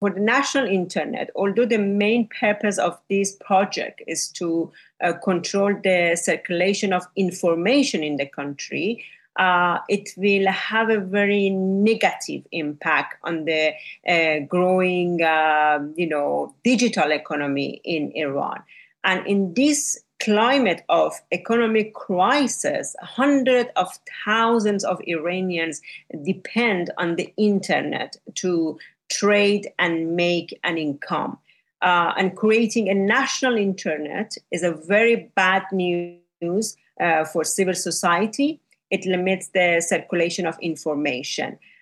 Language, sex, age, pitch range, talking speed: Finnish, female, 40-59, 170-210 Hz, 120 wpm